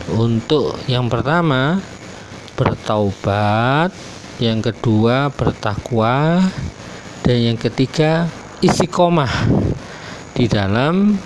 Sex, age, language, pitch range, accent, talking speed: male, 40-59, Indonesian, 110-140 Hz, native, 75 wpm